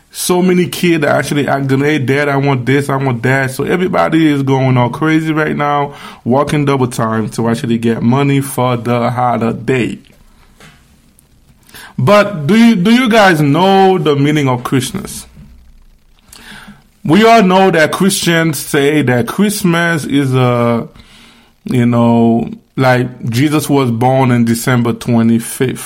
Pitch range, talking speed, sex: 125-170 Hz, 145 wpm, male